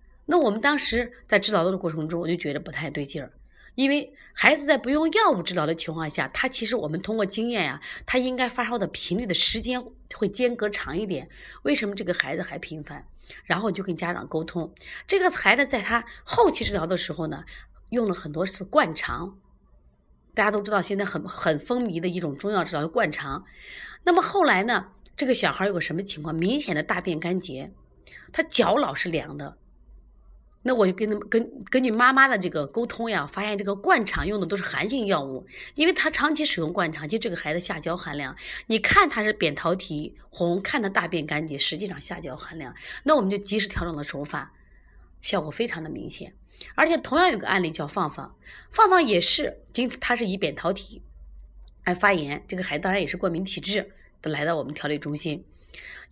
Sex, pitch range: female, 160-240 Hz